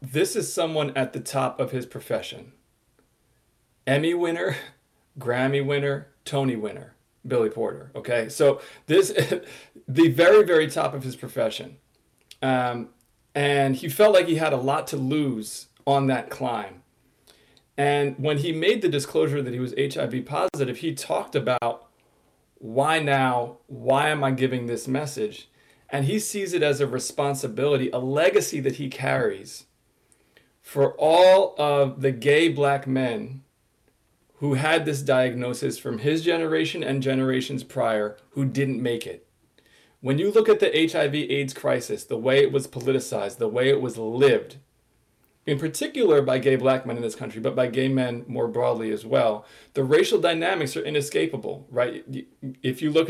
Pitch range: 130-155 Hz